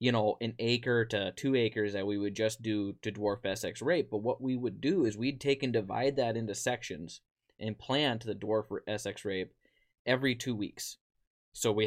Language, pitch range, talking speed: English, 110-135 Hz, 200 wpm